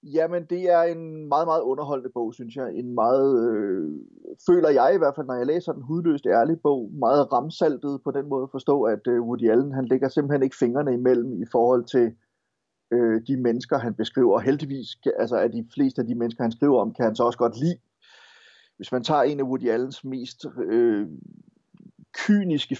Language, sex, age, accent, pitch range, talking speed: Danish, male, 30-49, native, 120-150 Hz, 205 wpm